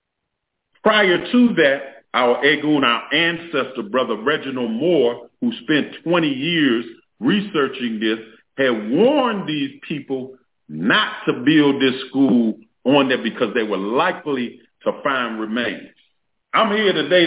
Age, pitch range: 40-59, 135-215 Hz